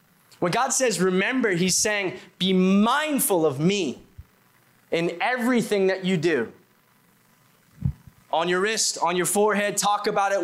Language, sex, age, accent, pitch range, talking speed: English, male, 20-39, American, 165-210 Hz, 140 wpm